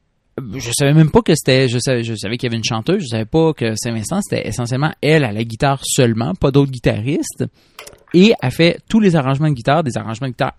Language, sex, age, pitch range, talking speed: French, male, 30-49, 120-155 Hz, 240 wpm